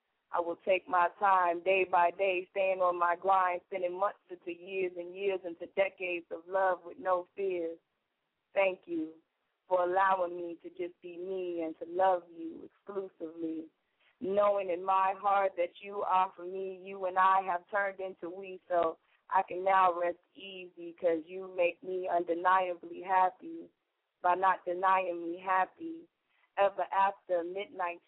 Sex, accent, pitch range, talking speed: female, American, 175-190 Hz, 160 wpm